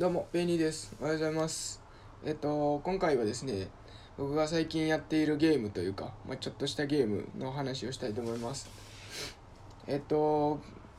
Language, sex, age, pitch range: Japanese, male, 20-39, 110-160 Hz